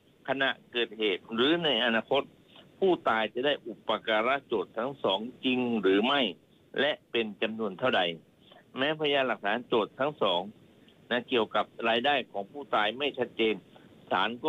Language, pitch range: Thai, 110-145 Hz